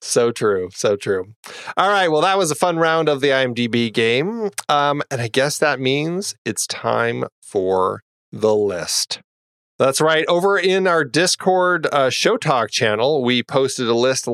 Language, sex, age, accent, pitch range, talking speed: English, male, 30-49, American, 120-165 Hz, 170 wpm